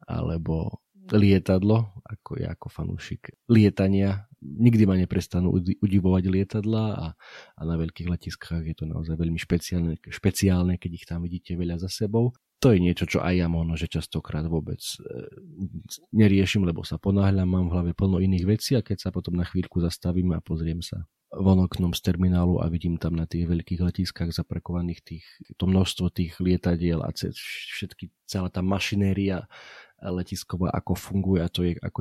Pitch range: 85-100 Hz